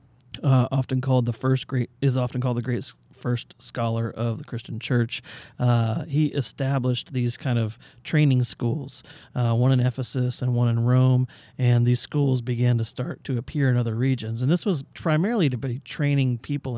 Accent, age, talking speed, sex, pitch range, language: American, 40-59, 185 wpm, male, 115-135 Hz, English